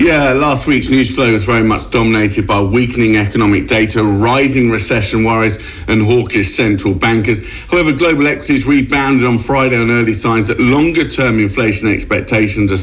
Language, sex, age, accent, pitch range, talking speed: English, male, 50-69, British, 105-130 Hz, 160 wpm